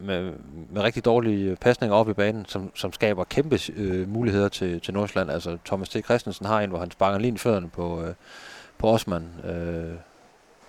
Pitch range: 90-110 Hz